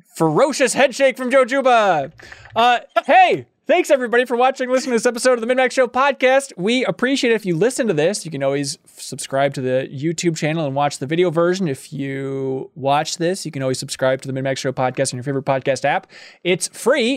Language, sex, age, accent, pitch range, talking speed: English, male, 20-39, American, 150-210 Hz, 215 wpm